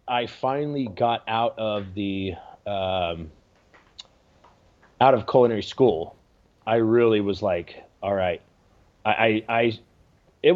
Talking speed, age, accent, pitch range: 120 wpm, 30-49, American, 90-110 Hz